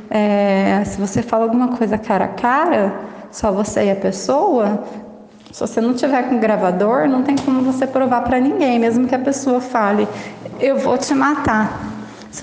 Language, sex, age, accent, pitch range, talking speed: Portuguese, female, 20-39, Brazilian, 215-265 Hz, 175 wpm